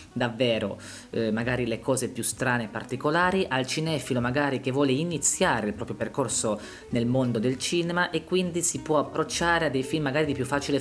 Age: 20-39